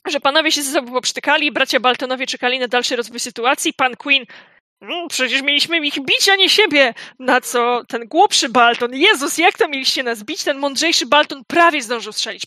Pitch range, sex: 240-290 Hz, female